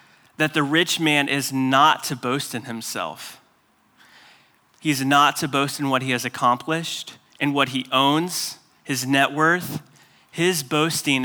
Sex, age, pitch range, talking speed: male, 30-49, 125-150 Hz, 150 wpm